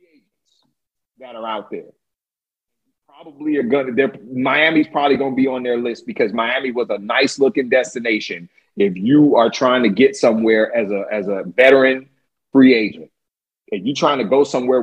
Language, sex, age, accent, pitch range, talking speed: English, male, 40-59, American, 130-190 Hz, 180 wpm